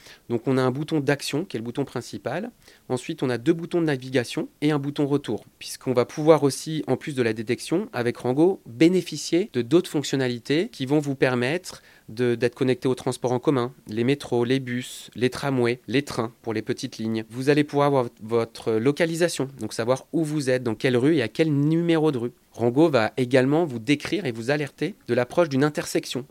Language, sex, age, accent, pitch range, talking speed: French, male, 30-49, French, 120-155 Hz, 210 wpm